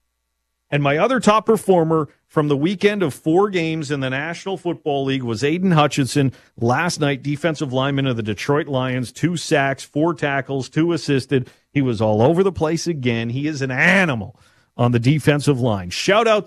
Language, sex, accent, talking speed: English, male, American, 180 wpm